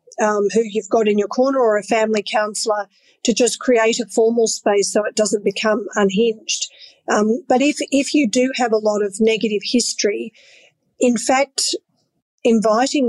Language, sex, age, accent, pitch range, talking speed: English, female, 40-59, Australian, 210-245 Hz, 170 wpm